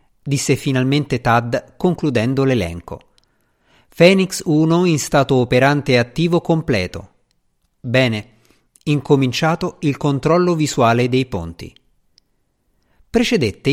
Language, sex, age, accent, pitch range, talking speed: Italian, male, 50-69, native, 120-160 Hz, 85 wpm